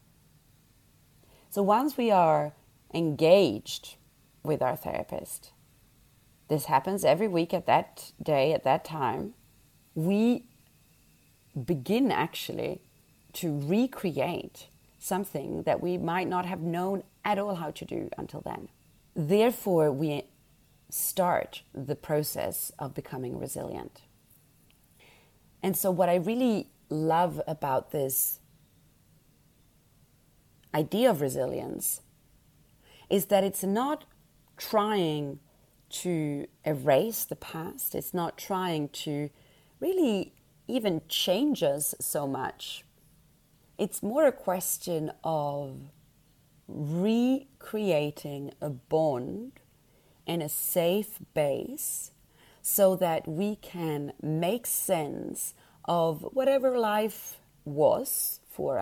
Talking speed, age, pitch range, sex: 100 wpm, 30-49, 150-200 Hz, female